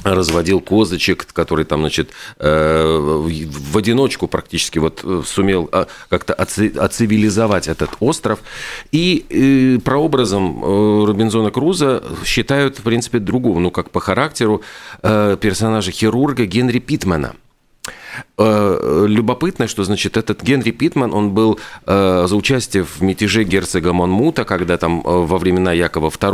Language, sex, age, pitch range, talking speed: Russian, male, 40-59, 90-120 Hz, 110 wpm